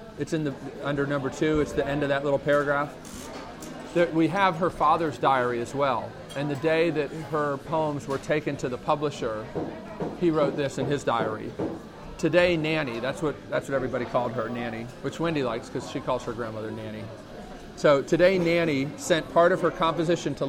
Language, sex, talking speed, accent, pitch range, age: English, male, 195 wpm, American, 130-165 Hz, 40-59